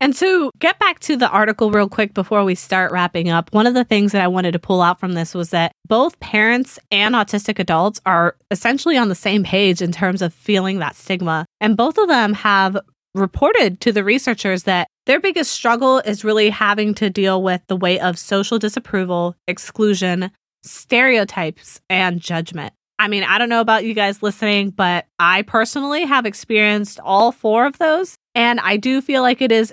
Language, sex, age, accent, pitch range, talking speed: English, female, 20-39, American, 185-230 Hz, 200 wpm